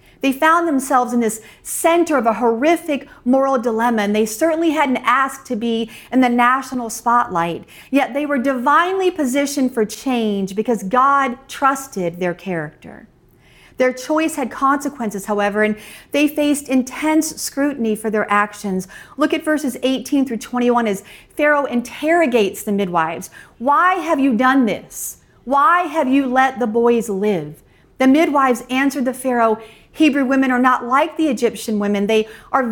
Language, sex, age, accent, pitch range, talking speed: English, female, 40-59, American, 225-290 Hz, 155 wpm